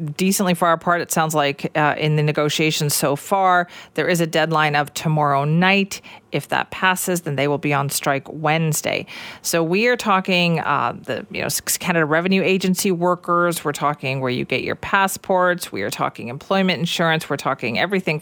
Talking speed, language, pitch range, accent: 185 wpm, English, 150-190 Hz, American